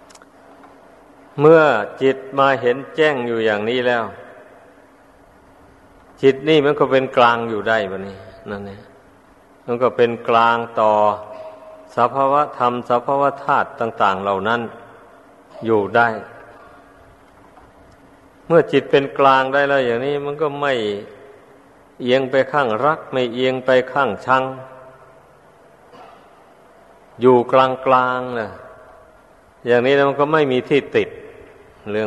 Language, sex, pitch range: Thai, male, 120-145 Hz